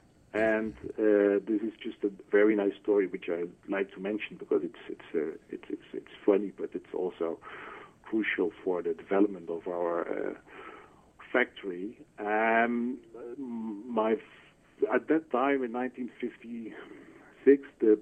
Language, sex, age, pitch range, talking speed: English, male, 50-69, 105-145 Hz, 140 wpm